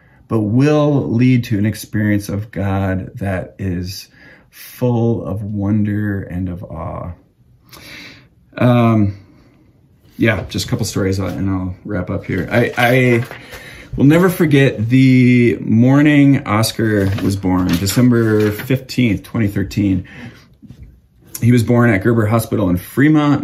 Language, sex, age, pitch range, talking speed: English, male, 30-49, 90-120 Hz, 125 wpm